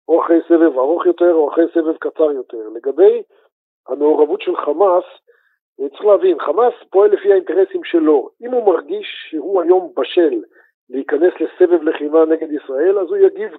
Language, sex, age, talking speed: Hebrew, male, 50-69, 155 wpm